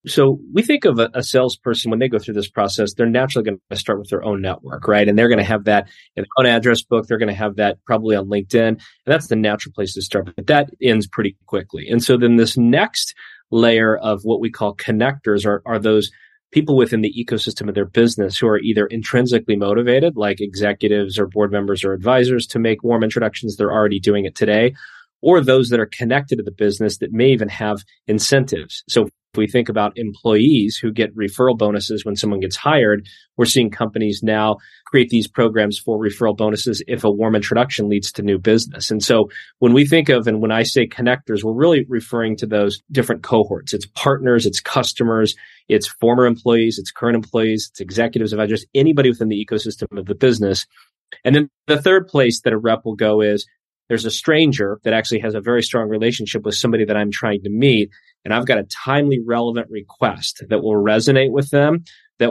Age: 30-49